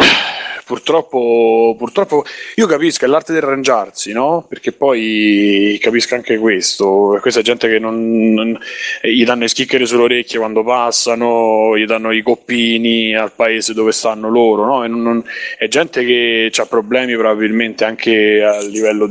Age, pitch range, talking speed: 30-49, 110-145 Hz, 155 wpm